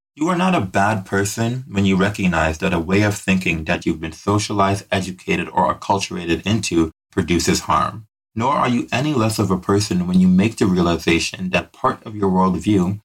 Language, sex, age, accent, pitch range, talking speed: English, male, 30-49, American, 95-115 Hz, 195 wpm